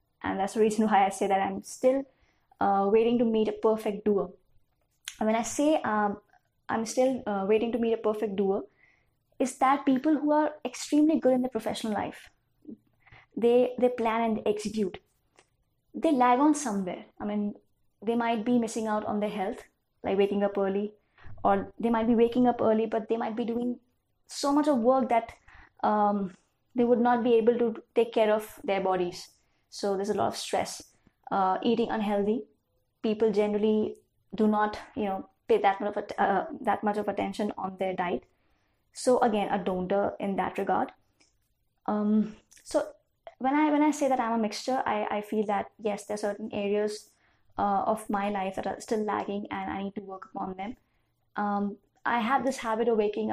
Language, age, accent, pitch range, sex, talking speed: English, 20-39, Indian, 200-240 Hz, female, 195 wpm